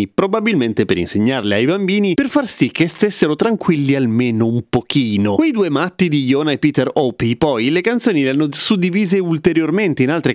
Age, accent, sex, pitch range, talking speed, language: 30-49, native, male, 130-170 Hz, 180 wpm, Italian